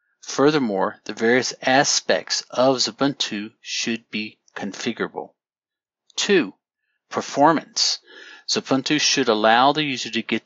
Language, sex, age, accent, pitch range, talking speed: English, male, 50-69, American, 110-135 Hz, 105 wpm